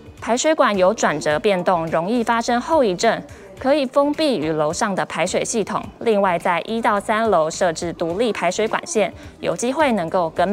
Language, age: Chinese, 20-39